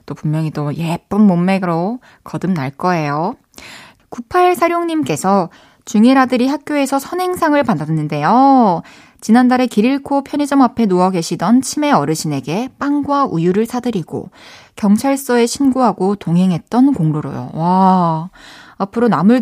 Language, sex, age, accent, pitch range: Korean, female, 20-39, native, 185-260 Hz